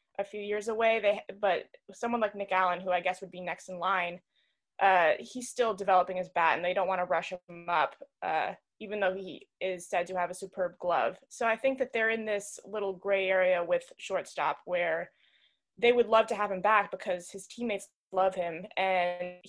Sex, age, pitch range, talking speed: female, 20-39, 185-220 Hz, 210 wpm